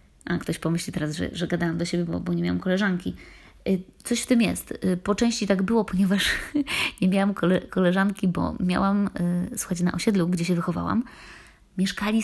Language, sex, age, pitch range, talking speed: Polish, female, 20-39, 175-215 Hz, 170 wpm